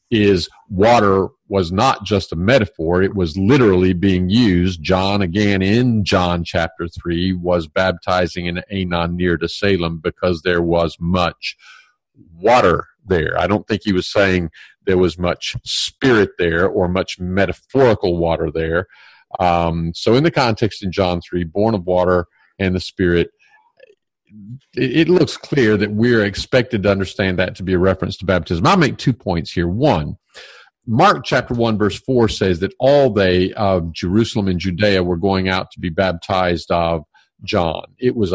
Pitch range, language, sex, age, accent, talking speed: 90-105 Hz, English, male, 50-69, American, 165 wpm